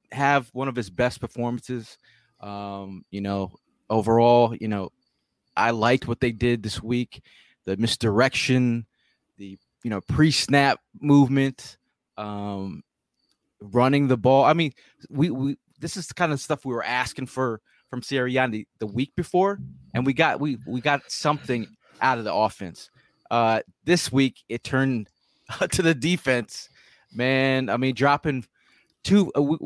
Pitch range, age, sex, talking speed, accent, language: 110-135 Hz, 20-39, male, 150 wpm, American, English